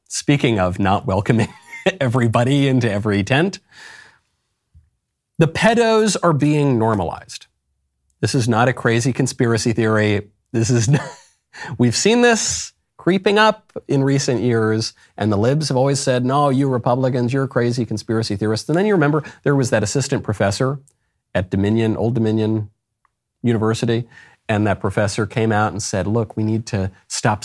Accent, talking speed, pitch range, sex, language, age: American, 155 wpm, 110-145 Hz, male, English, 40-59